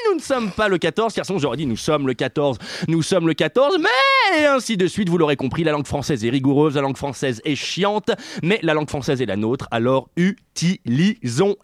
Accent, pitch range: French, 140-205 Hz